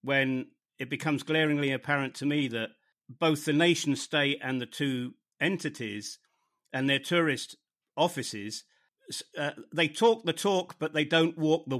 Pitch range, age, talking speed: 125-160 Hz, 50-69, 155 wpm